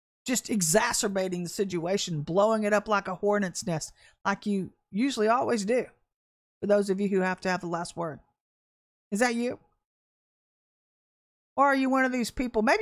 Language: English